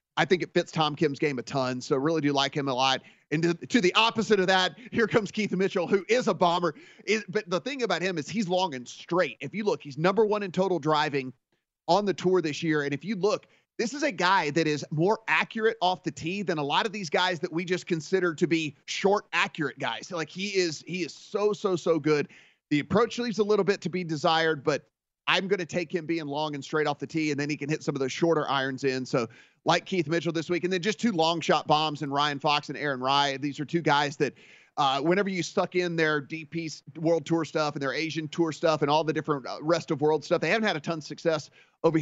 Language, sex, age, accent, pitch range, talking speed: English, male, 30-49, American, 150-185 Hz, 260 wpm